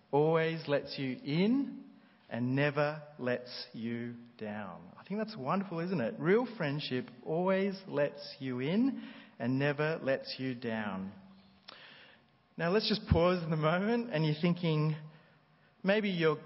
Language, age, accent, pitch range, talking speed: English, 30-49, Australian, 130-190 Hz, 135 wpm